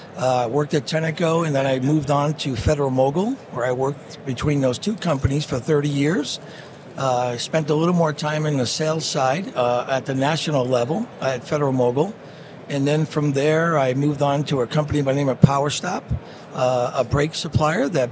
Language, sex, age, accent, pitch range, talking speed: Italian, male, 60-79, American, 135-155 Hz, 205 wpm